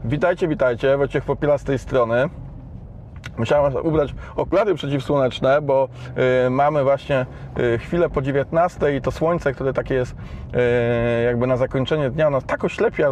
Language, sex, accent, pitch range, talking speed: Polish, male, native, 125-165 Hz, 145 wpm